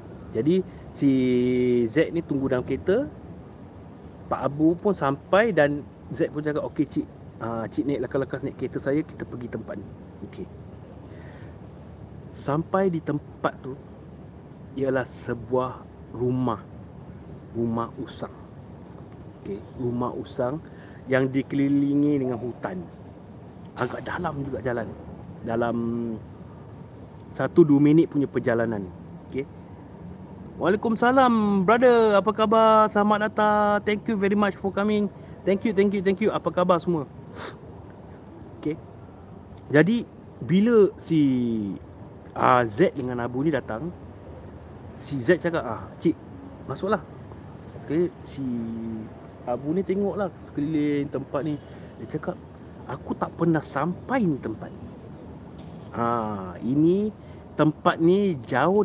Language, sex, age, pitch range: Malay, male, 30-49, 115-175 Hz